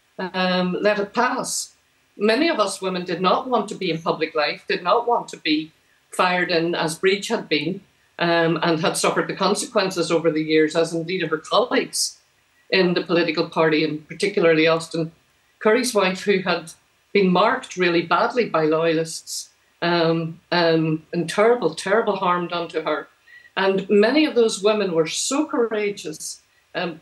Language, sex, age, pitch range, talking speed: English, female, 50-69, 170-215 Hz, 170 wpm